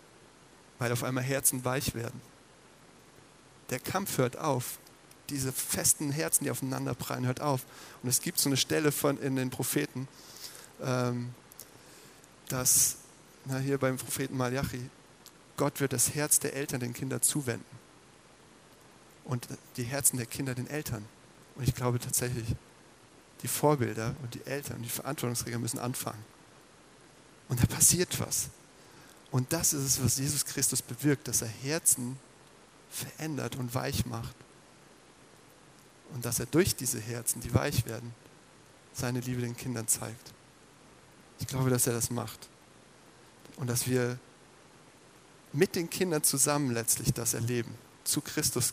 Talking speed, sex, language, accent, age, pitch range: 145 wpm, male, German, German, 40-59, 120-140 Hz